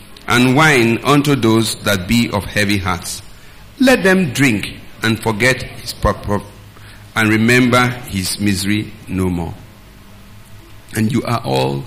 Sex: male